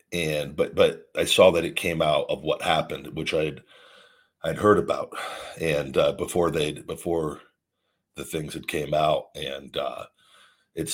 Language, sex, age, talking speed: English, male, 50-69, 165 wpm